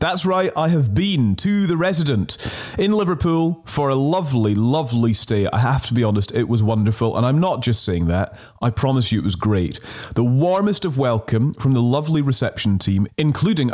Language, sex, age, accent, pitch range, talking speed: English, male, 30-49, British, 105-135 Hz, 195 wpm